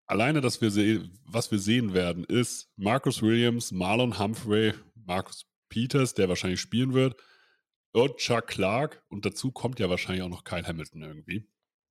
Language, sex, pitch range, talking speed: German, male, 90-115 Hz, 160 wpm